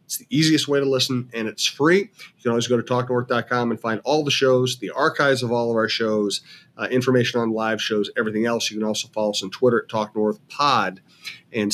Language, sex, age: English, male, 30-49